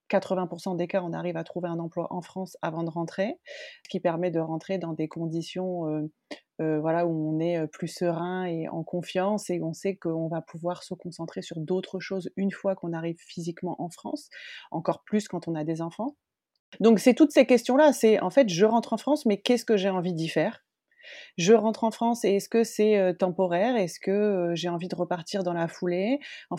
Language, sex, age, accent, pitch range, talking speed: French, female, 30-49, French, 170-215 Hz, 215 wpm